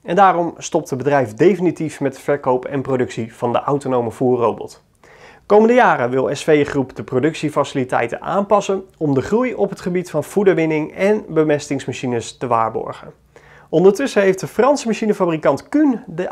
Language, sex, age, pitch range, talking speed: Dutch, male, 30-49, 130-180 Hz, 155 wpm